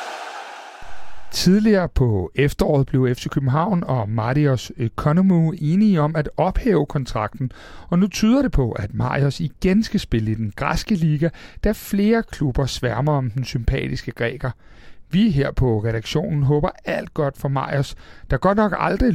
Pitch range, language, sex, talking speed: 125-190 Hz, Danish, male, 155 wpm